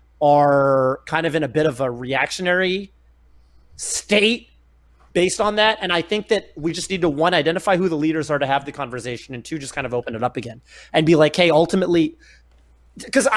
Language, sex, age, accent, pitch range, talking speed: English, male, 30-49, American, 130-180 Hz, 205 wpm